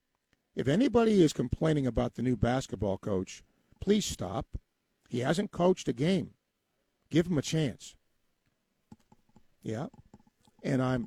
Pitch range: 110-140 Hz